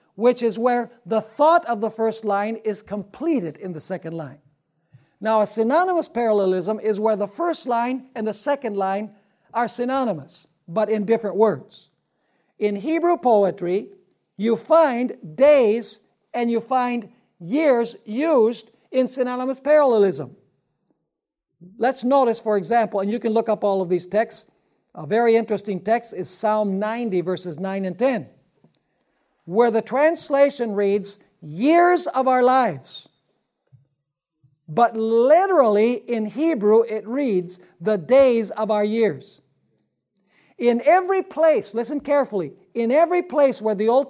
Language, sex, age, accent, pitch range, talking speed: English, male, 60-79, American, 195-250 Hz, 140 wpm